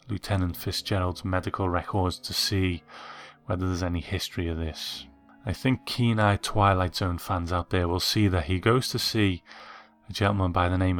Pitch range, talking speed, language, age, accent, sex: 90-110 Hz, 175 wpm, English, 30-49, British, male